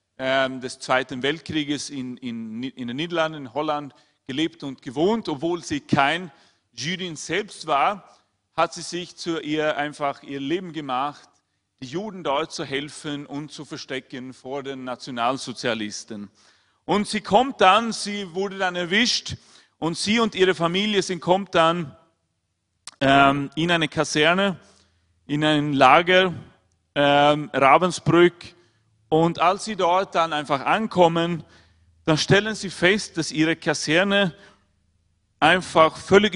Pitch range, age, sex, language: 120-175 Hz, 40-59, male, Chinese